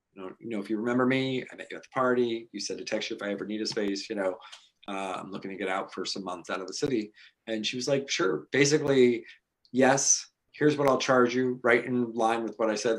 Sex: male